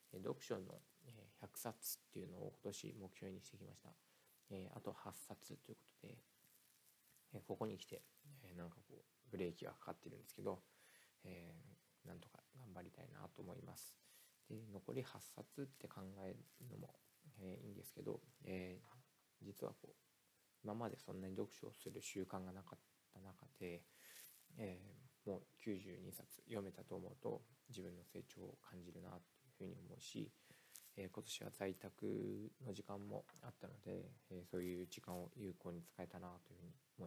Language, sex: Japanese, male